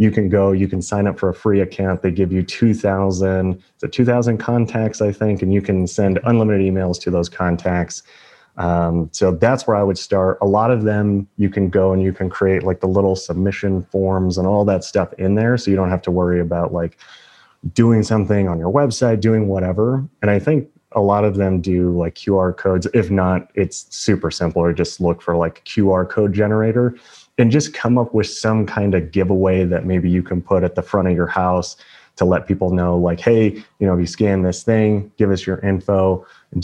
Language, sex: English, male